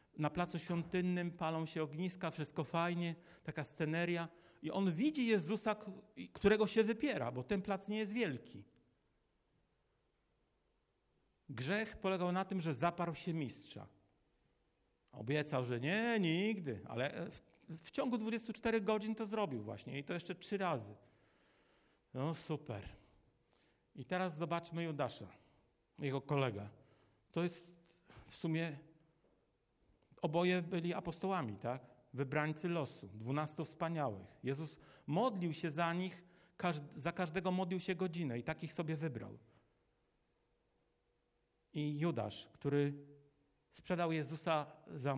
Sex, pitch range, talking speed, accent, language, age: male, 120-180 Hz, 120 wpm, native, Polish, 50-69